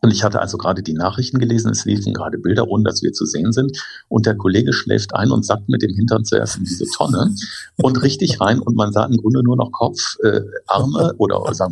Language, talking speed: German, 240 wpm